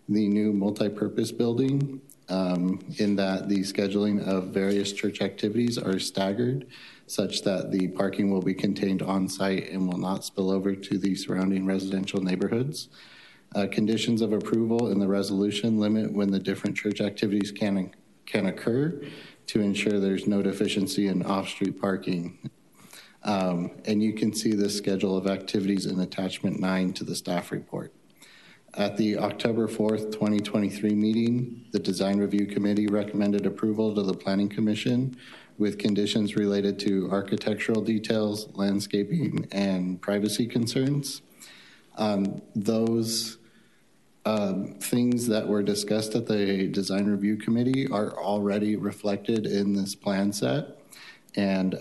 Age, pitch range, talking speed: 40-59, 100-110 Hz, 140 wpm